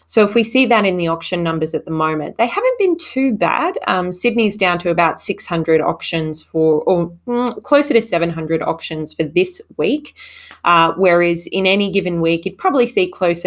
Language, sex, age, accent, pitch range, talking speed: English, female, 20-39, Australian, 165-215 Hz, 200 wpm